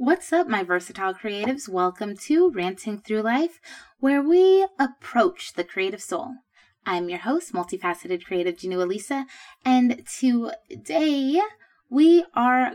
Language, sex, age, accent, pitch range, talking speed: English, female, 20-39, American, 195-260 Hz, 125 wpm